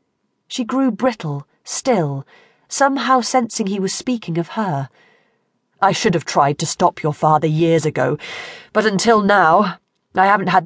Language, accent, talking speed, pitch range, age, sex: English, British, 150 wpm, 170-230 Hz, 30-49, female